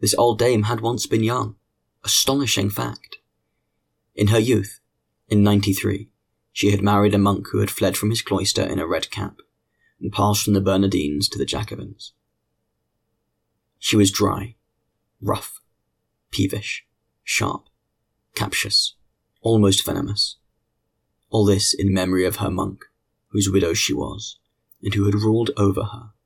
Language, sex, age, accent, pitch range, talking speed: English, male, 30-49, British, 100-110 Hz, 145 wpm